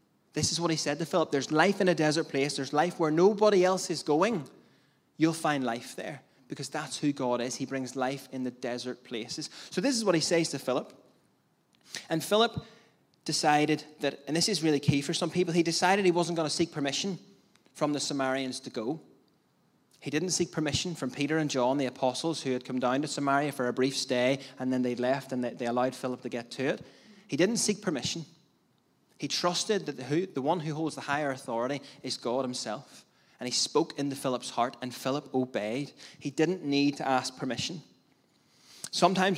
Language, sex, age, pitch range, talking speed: English, male, 20-39, 130-165 Hz, 205 wpm